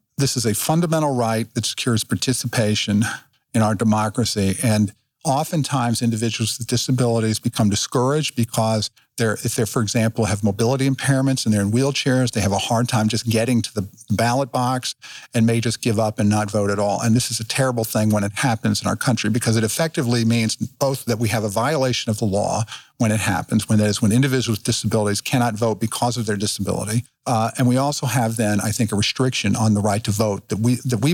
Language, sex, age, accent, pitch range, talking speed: English, male, 50-69, American, 110-130 Hz, 215 wpm